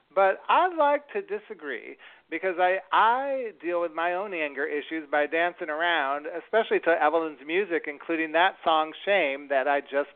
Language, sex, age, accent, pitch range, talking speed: English, male, 40-59, American, 145-180 Hz, 165 wpm